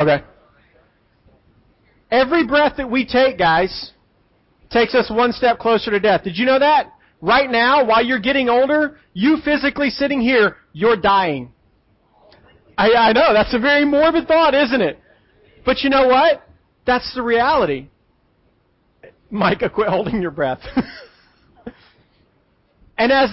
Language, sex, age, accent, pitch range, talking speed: English, male, 40-59, American, 185-265 Hz, 140 wpm